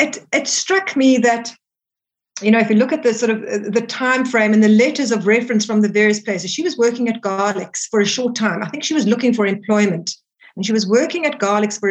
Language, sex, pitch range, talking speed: English, female, 215-255 Hz, 245 wpm